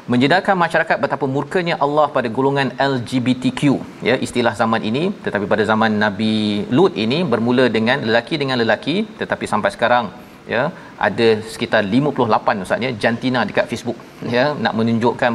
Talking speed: 145 wpm